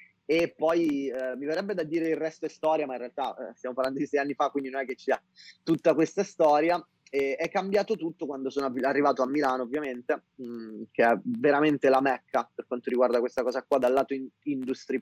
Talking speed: 225 wpm